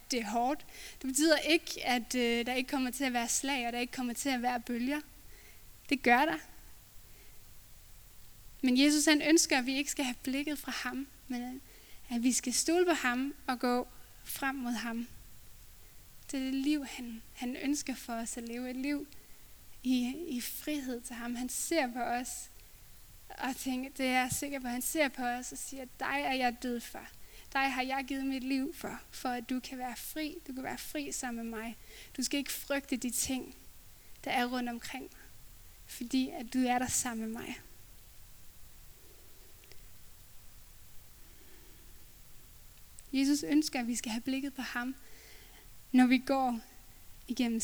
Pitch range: 235-275 Hz